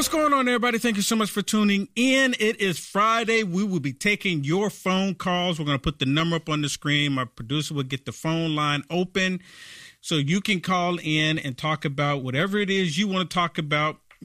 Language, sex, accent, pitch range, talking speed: English, male, American, 150-205 Hz, 230 wpm